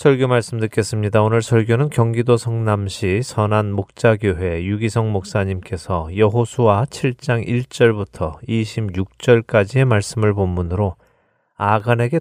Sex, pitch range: male, 95-120 Hz